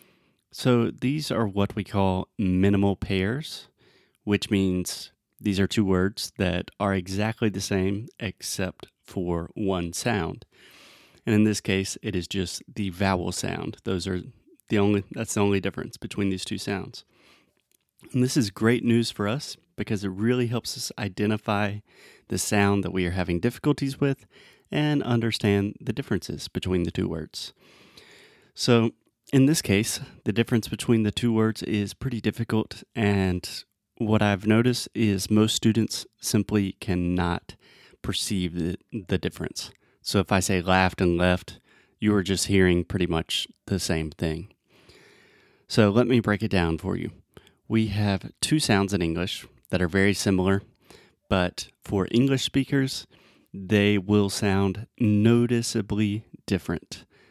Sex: male